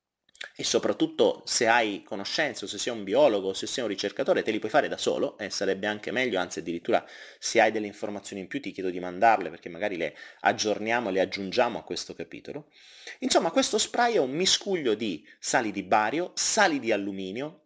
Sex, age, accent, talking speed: male, 30-49, native, 200 wpm